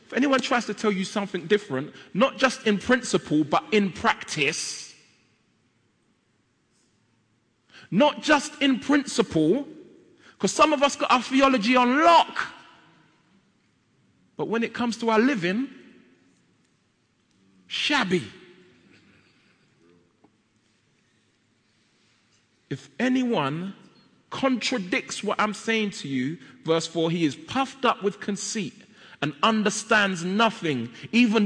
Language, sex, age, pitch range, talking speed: English, male, 40-59, 180-255 Hz, 105 wpm